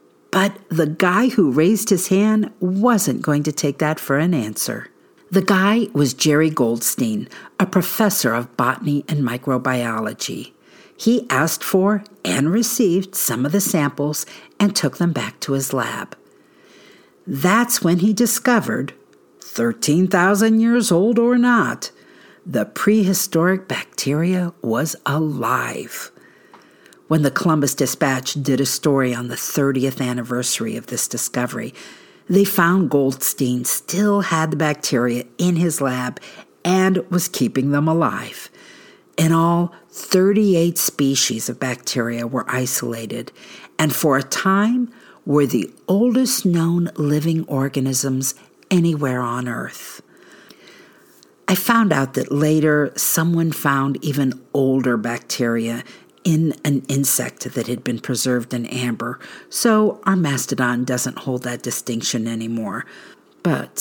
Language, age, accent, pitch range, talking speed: English, 50-69, American, 130-185 Hz, 125 wpm